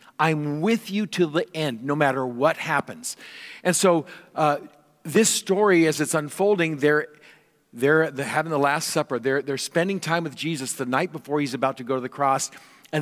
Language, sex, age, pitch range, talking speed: English, male, 50-69, 135-185 Hz, 195 wpm